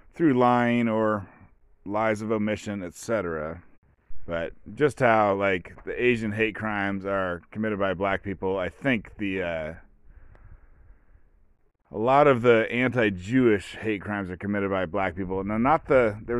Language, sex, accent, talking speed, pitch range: English, male, American, 145 wpm, 90-110 Hz